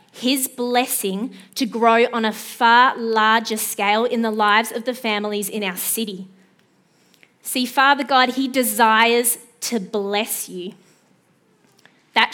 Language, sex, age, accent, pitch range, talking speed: English, female, 20-39, Australian, 210-245 Hz, 130 wpm